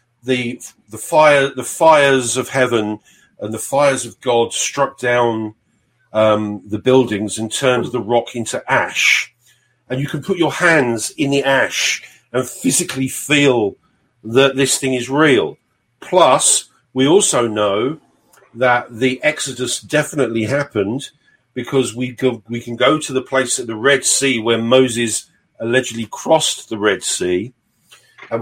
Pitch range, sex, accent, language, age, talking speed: 120-135 Hz, male, British, English, 50-69, 145 wpm